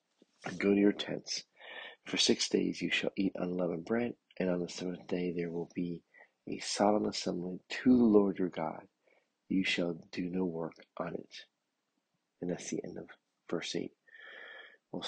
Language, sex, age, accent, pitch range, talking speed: English, male, 40-59, American, 90-115 Hz, 170 wpm